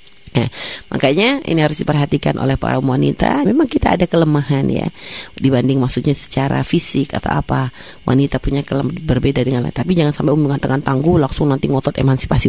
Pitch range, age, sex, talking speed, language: 135-175 Hz, 30-49, female, 170 wpm, Indonesian